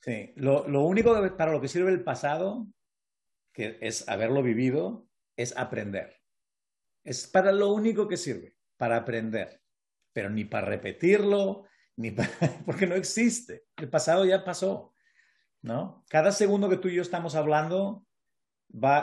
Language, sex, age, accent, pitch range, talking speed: English, male, 50-69, Mexican, 130-190 Hz, 150 wpm